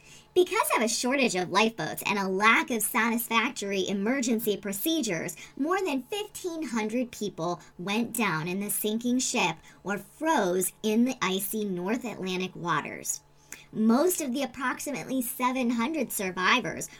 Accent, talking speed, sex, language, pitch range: American, 130 wpm, male, English, 200-265 Hz